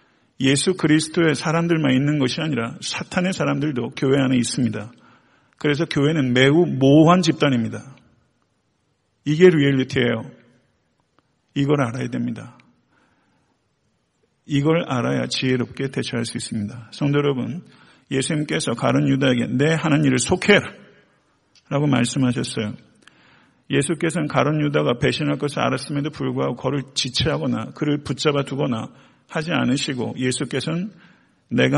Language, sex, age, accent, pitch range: Korean, male, 50-69, native, 130-160 Hz